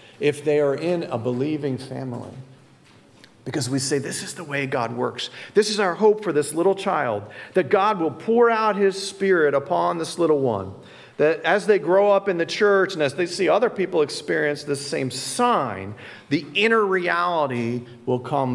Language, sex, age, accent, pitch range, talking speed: English, male, 50-69, American, 120-185 Hz, 190 wpm